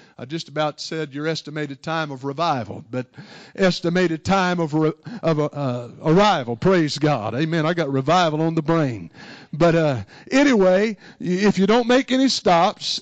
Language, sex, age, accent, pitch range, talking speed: English, male, 60-79, American, 155-200 Hz, 165 wpm